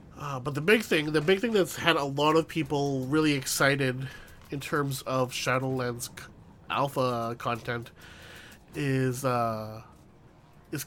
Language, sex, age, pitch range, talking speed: English, male, 30-49, 125-155 Hz, 145 wpm